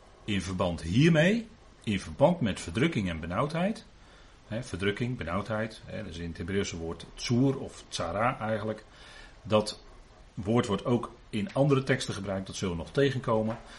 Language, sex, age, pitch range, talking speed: Dutch, male, 40-59, 95-135 Hz, 150 wpm